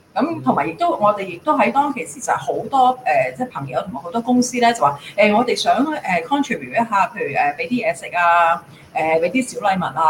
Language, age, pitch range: Chinese, 30-49, 175-245 Hz